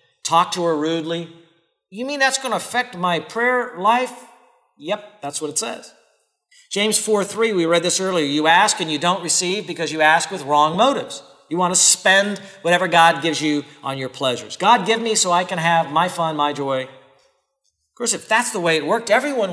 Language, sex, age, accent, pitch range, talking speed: English, male, 50-69, American, 165-260 Hz, 205 wpm